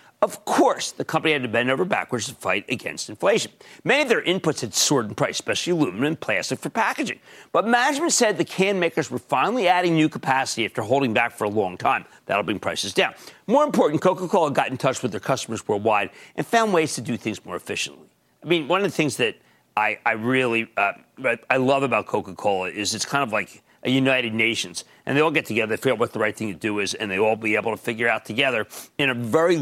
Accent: American